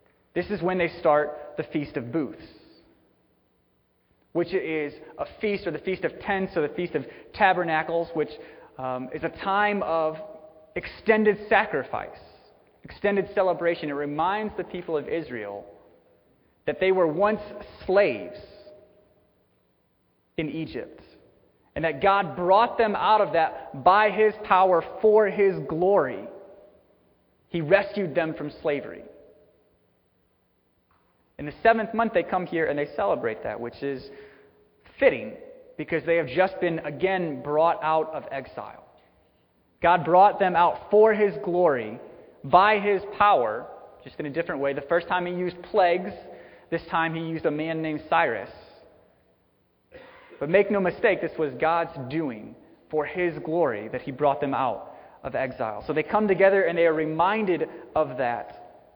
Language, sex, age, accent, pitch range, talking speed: English, male, 30-49, American, 150-200 Hz, 150 wpm